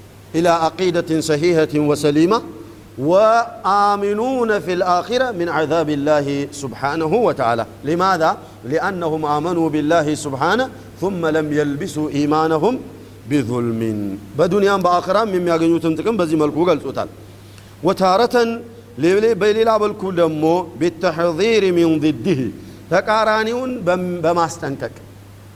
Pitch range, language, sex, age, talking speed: 145-200 Hz, Amharic, male, 50-69, 95 wpm